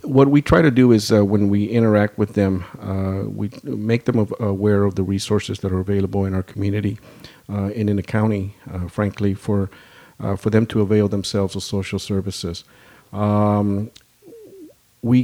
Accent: American